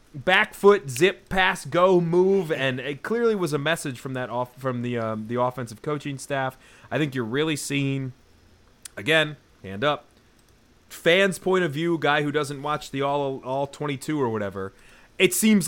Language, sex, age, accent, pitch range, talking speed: English, male, 30-49, American, 105-145 Hz, 175 wpm